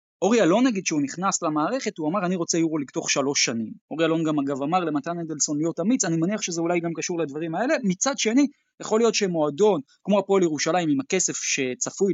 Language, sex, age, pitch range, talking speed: Hebrew, male, 20-39, 155-210 Hz, 215 wpm